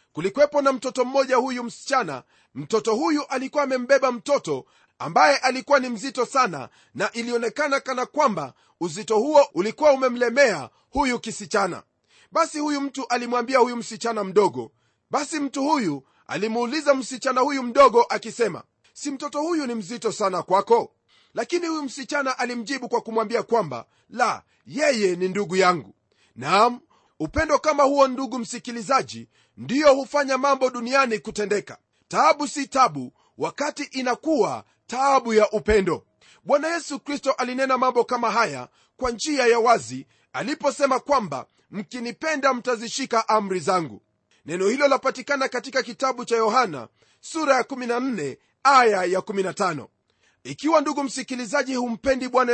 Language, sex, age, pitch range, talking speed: Swahili, male, 30-49, 215-275 Hz, 130 wpm